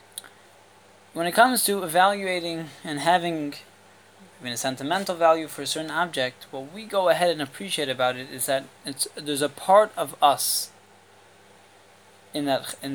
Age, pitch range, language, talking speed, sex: 20-39, 120-170 Hz, English, 160 wpm, male